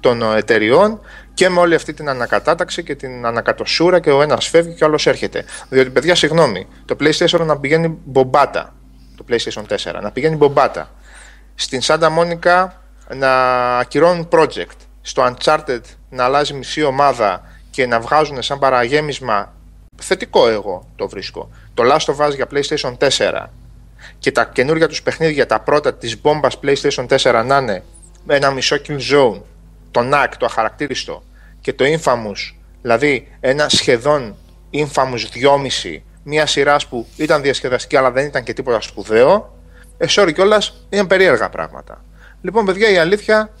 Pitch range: 130-170 Hz